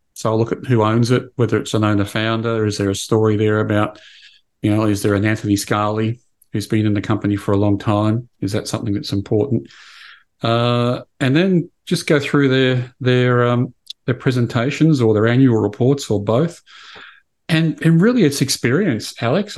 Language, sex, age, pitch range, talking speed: English, male, 40-59, 105-130 Hz, 185 wpm